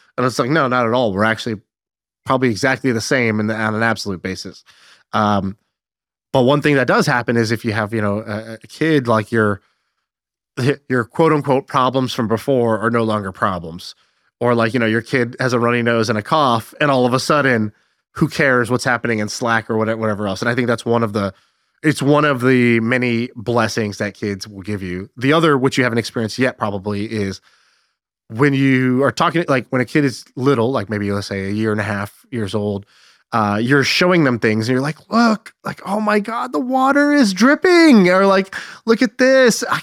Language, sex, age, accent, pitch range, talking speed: English, male, 20-39, American, 110-150 Hz, 220 wpm